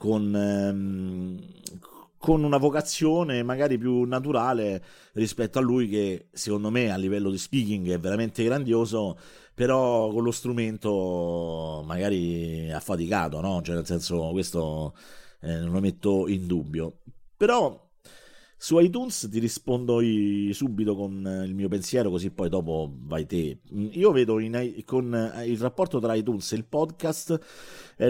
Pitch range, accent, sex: 90-125 Hz, native, male